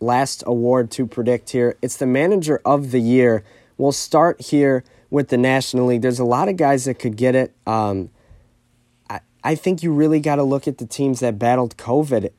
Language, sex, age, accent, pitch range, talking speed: English, male, 20-39, American, 115-135 Hz, 205 wpm